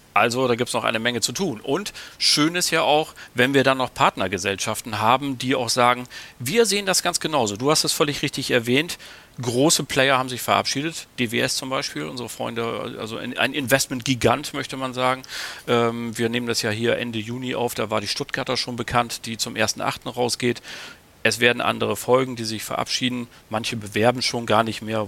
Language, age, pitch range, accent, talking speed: German, 40-59, 115-135 Hz, German, 195 wpm